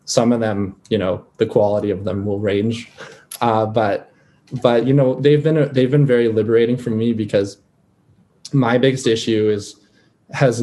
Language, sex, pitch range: English, male, 105-120 Hz